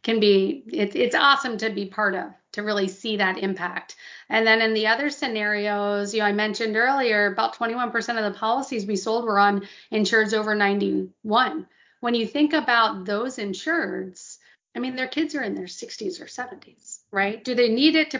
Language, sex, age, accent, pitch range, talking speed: English, female, 40-59, American, 205-255 Hz, 190 wpm